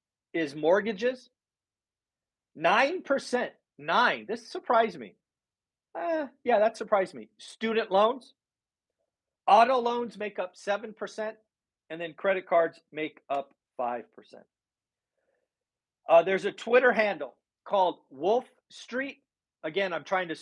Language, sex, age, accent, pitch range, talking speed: English, male, 40-59, American, 160-225 Hz, 120 wpm